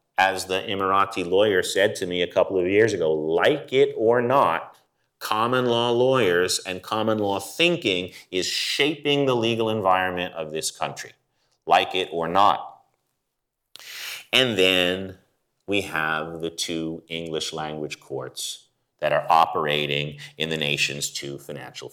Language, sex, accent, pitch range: English, male, American, 80-115 Hz